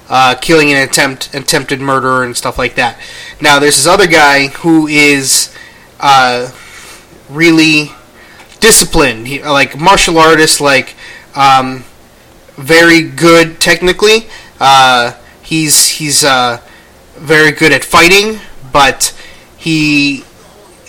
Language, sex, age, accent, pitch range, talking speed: English, male, 20-39, American, 130-160 Hz, 110 wpm